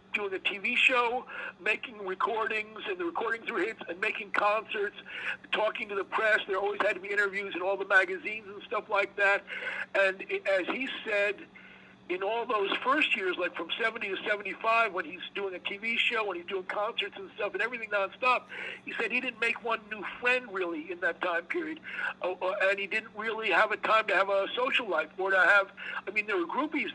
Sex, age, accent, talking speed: male, 60-79, American, 215 wpm